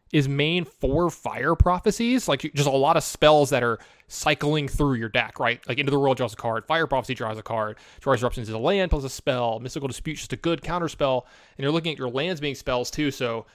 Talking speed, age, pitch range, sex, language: 245 wpm, 20-39, 125-155 Hz, male, English